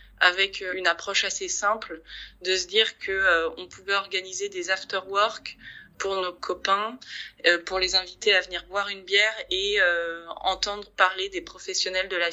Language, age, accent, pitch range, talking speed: French, 20-39, French, 180-215 Hz, 165 wpm